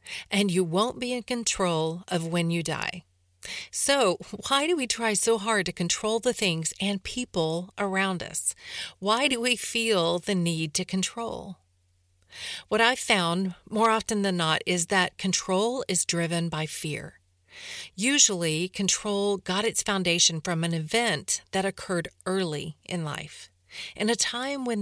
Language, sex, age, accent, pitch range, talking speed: English, female, 40-59, American, 170-220 Hz, 155 wpm